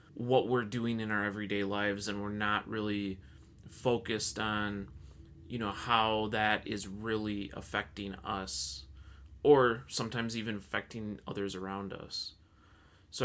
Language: English